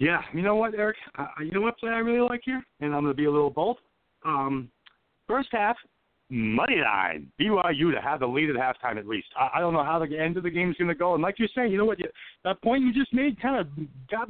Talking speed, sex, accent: 275 wpm, male, American